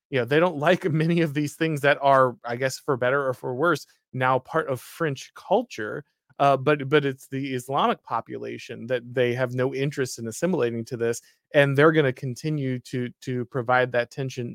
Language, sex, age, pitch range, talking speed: English, male, 20-39, 125-145 Hz, 205 wpm